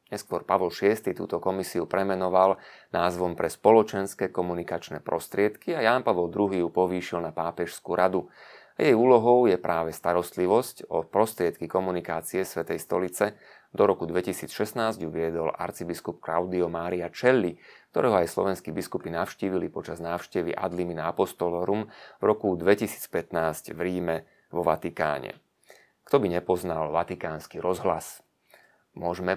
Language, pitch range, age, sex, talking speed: Slovak, 85-95 Hz, 30-49, male, 125 wpm